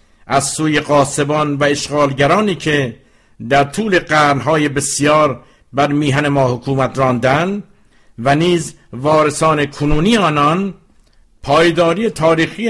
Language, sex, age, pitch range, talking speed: English, male, 50-69, 135-160 Hz, 105 wpm